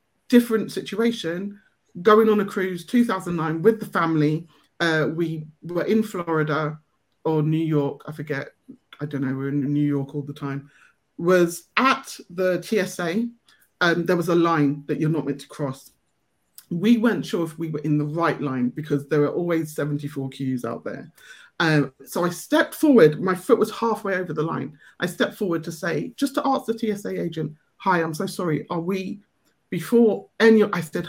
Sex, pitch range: male, 155-230 Hz